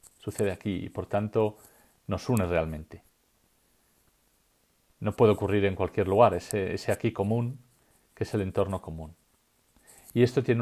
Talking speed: 145 wpm